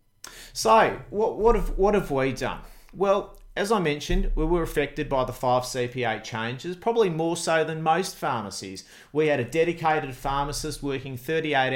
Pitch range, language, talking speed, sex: 120-155 Hz, English, 170 wpm, male